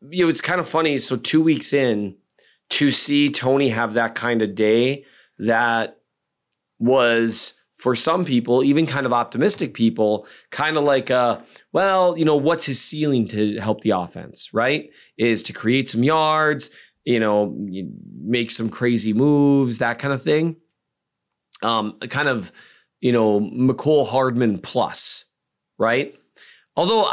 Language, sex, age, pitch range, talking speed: English, male, 20-39, 110-155 Hz, 150 wpm